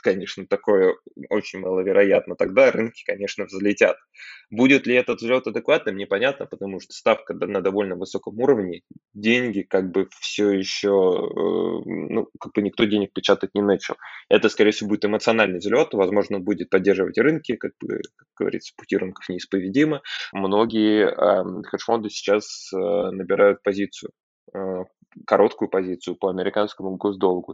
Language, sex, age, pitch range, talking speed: Russian, male, 20-39, 95-110 Hz, 140 wpm